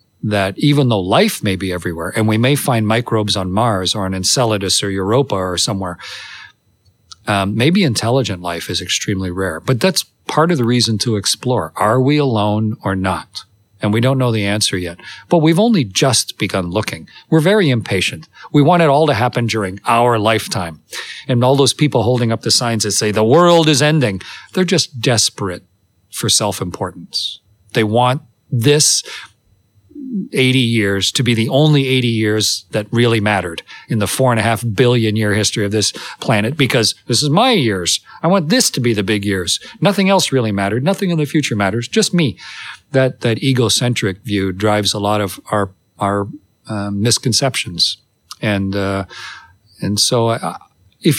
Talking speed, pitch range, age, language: 180 wpm, 100-130 Hz, 40-59, Swedish